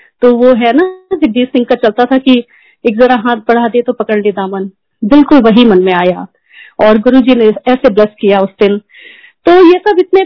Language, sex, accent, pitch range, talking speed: Hindi, female, native, 215-285 Hz, 210 wpm